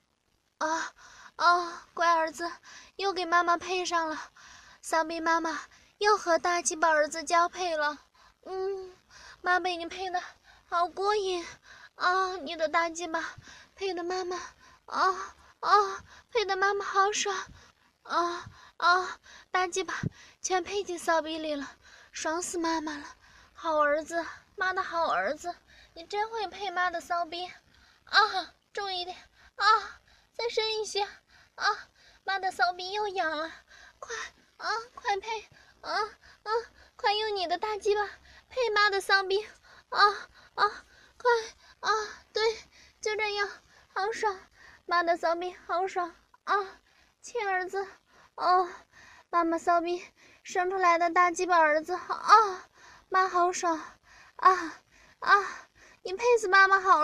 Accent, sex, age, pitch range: native, female, 20-39, 345-405 Hz